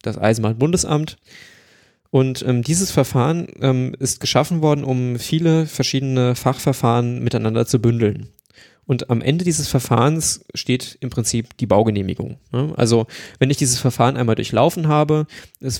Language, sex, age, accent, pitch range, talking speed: German, male, 20-39, German, 115-140 Hz, 135 wpm